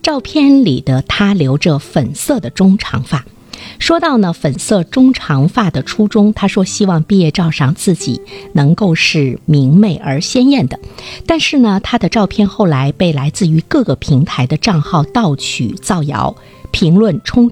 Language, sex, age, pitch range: Chinese, female, 50-69, 140-205 Hz